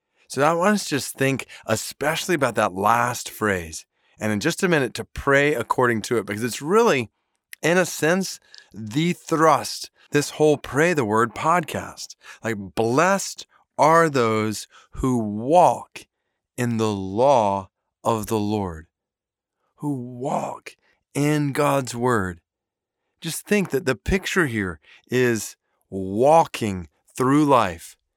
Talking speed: 135 wpm